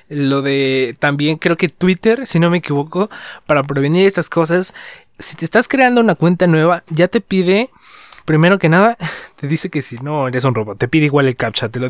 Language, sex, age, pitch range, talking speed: Spanish, male, 20-39, 130-165 Hz, 210 wpm